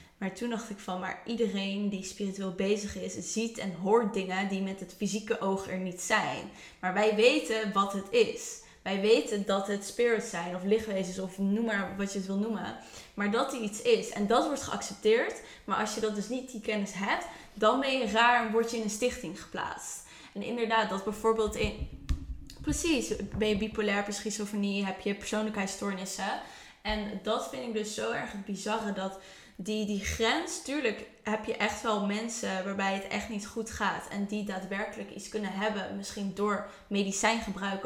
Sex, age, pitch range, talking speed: female, 10-29, 195-230 Hz, 190 wpm